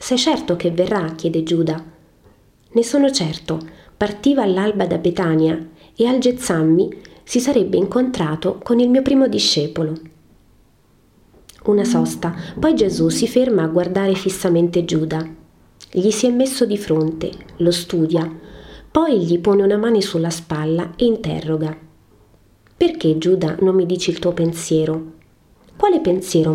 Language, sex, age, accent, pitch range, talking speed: Italian, female, 30-49, native, 160-200 Hz, 140 wpm